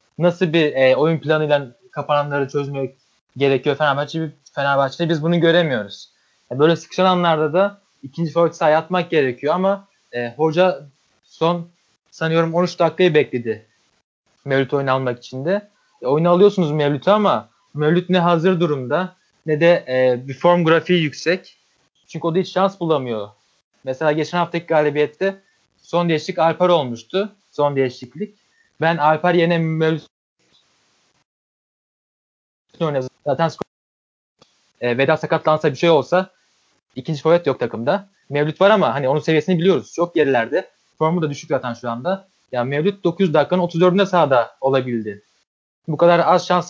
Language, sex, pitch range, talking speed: Turkish, male, 140-175 Hz, 140 wpm